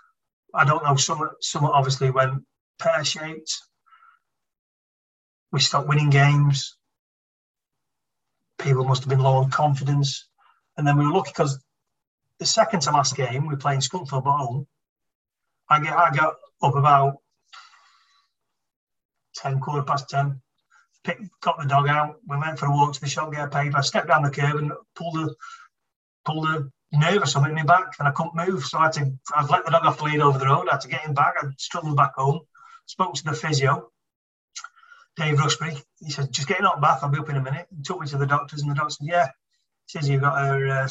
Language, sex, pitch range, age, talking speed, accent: English, male, 140-160 Hz, 40-59, 200 wpm, British